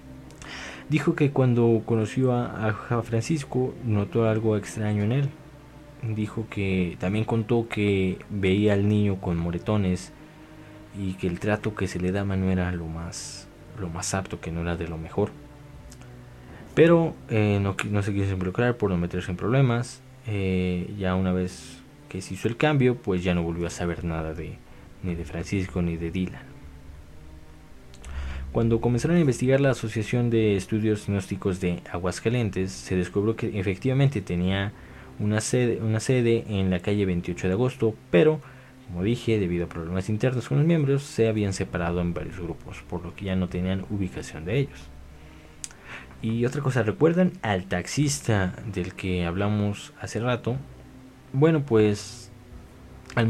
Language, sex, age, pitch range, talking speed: Spanish, male, 20-39, 90-120 Hz, 160 wpm